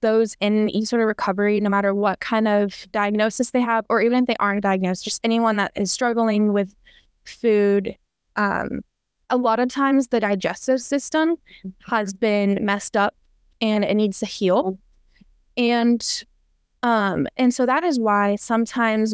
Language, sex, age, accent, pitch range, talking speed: English, female, 10-29, American, 200-230 Hz, 165 wpm